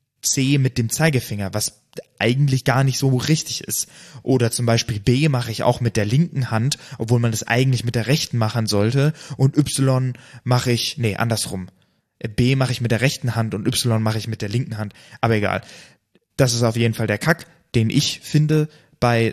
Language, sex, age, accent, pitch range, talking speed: German, male, 20-39, German, 110-130 Hz, 200 wpm